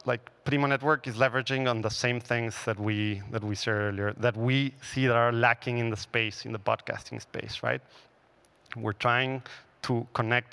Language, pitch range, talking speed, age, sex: English, 115-135 Hz, 190 wpm, 30-49, male